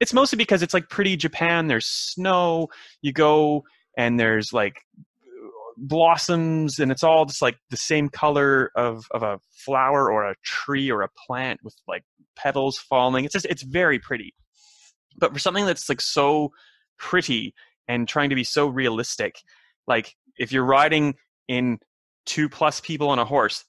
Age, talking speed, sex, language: 20-39, 165 wpm, male, English